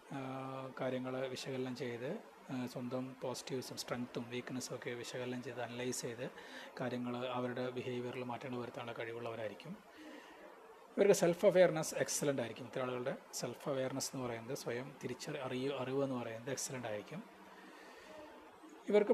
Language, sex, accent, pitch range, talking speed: Malayalam, male, native, 125-155 Hz, 115 wpm